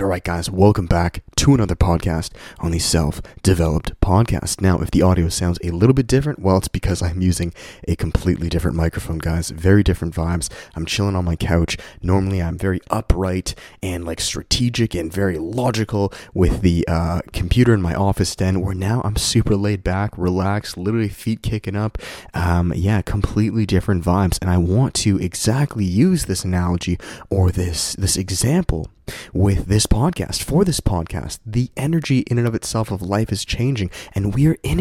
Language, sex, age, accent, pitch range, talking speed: English, male, 20-39, American, 85-110 Hz, 180 wpm